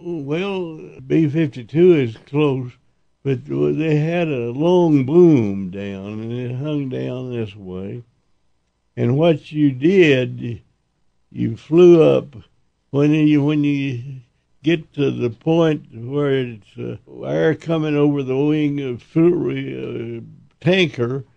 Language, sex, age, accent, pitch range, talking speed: English, male, 60-79, American, 120-150 Hz, 120 wpm